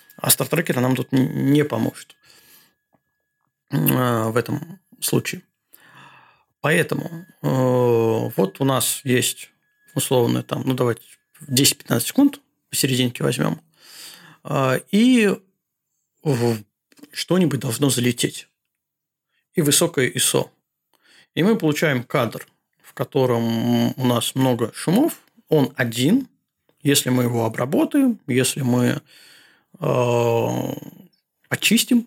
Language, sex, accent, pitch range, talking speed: Russian, male, native, 125-170 Hz, 95 wpm